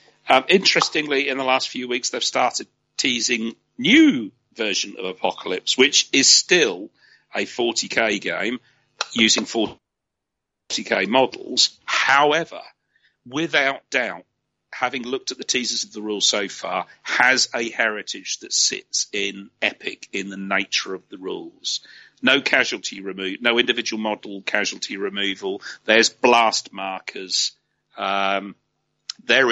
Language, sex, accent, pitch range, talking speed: English, male, British, 100-130 Hz, 125 wpm